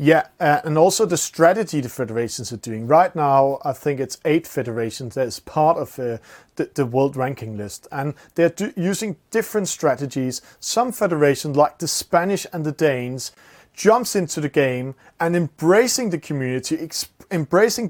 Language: English